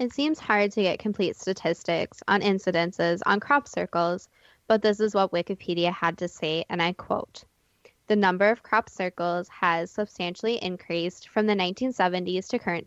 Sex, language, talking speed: female, English, 170 wpm